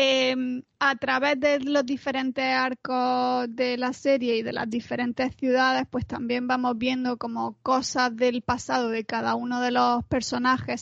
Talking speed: 160 wpm